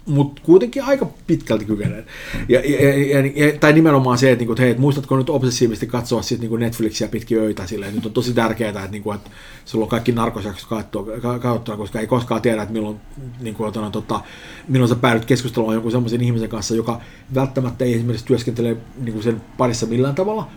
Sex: male